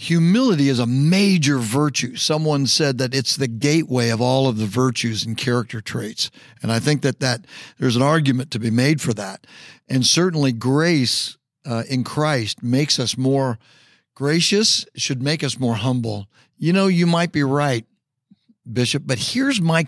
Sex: male